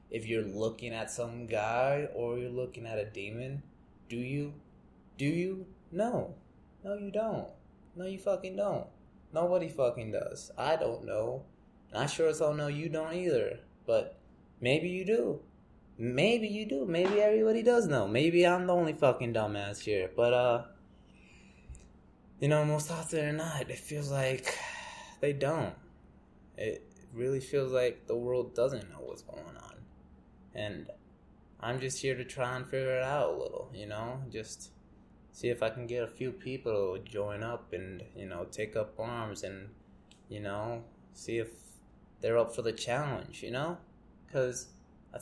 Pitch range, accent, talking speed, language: 110-150 Hz, American, 165 wpm, English